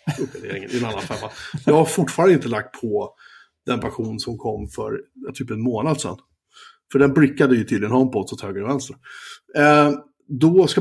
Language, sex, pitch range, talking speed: Swedish, male, 120-155 Hz, 165 wpm